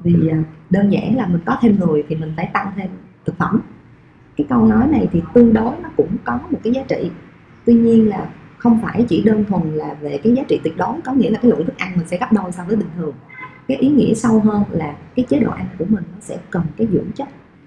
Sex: female